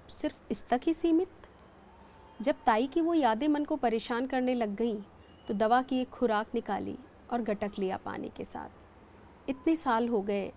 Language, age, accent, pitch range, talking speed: Hindi, 40-59, native, 215-290 Hz, 180 wpm